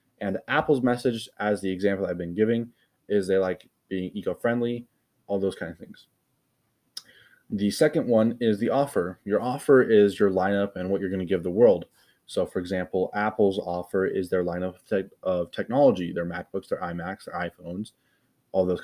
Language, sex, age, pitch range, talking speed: English, male, 20-39, 95-120 Hz, 180 wpm